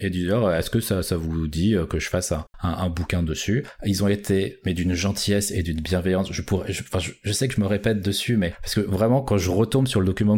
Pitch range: 95-115 Hz